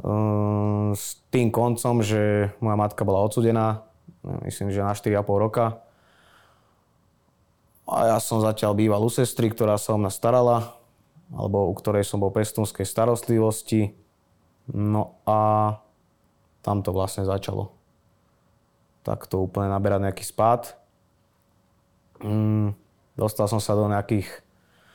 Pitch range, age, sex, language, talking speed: 105-125 Hz, 20-39, male, Slovak, 120 wpm